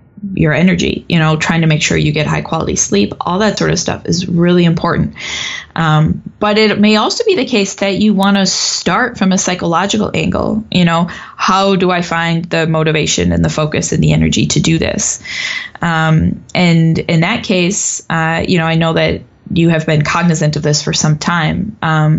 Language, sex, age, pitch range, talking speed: English, female, 10-29, 155-185 Hz, 205 wpm